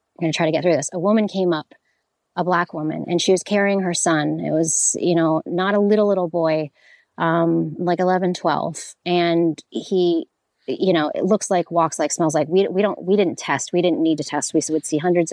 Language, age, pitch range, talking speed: English, 30-49, 165-195 Hz, 230 wpm